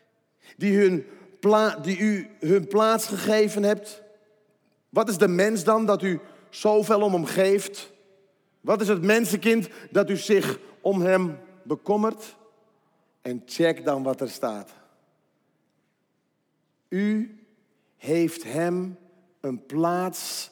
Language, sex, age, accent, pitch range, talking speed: Dutch, male, 50-69, Dutch, 160-215 Hz, 120 wpm